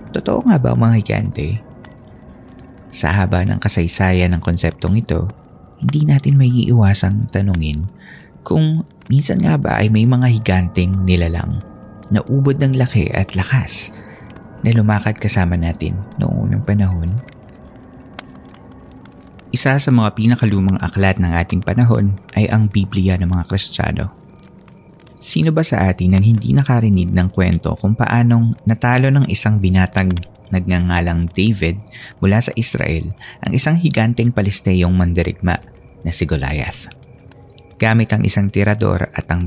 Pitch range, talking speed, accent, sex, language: 90-115 Hz, 135 wpm, native, male, Filipino